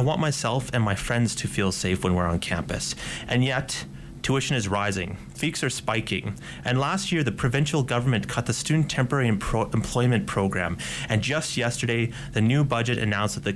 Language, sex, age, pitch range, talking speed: English, male, 30-49, 100-130 Hz, 190 wpm